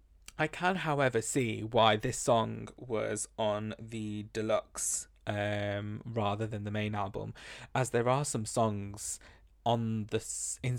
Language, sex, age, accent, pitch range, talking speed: English, male, 20-39, British, 105-115 Hz, 140 wpm